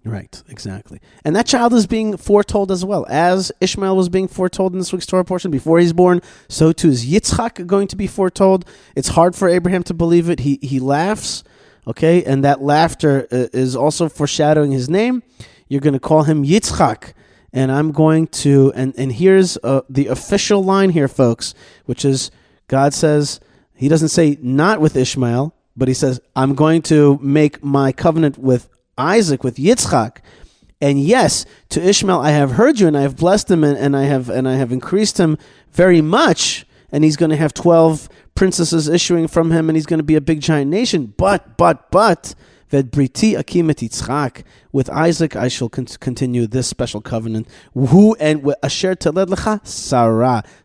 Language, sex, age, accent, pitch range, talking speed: English, male, 30-49, American, 135-180 Hz, 180 wpm